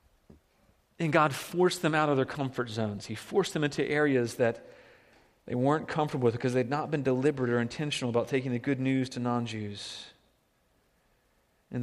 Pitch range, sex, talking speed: 125-160 Hz, male, 170 wpm